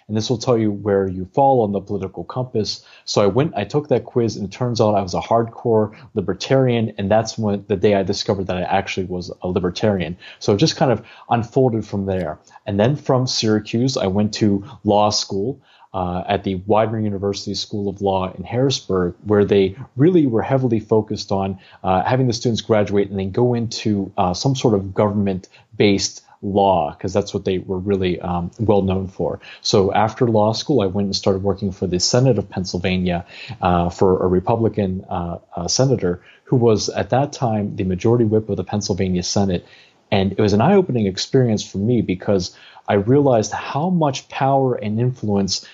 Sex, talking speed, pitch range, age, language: male, 195 wpm, 95-120 Hz, 30-49, English